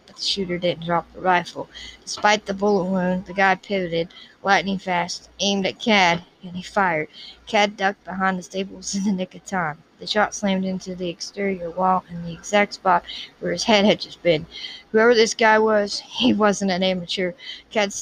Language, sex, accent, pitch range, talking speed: English, female, American, 185-215 Hz, 190 wpm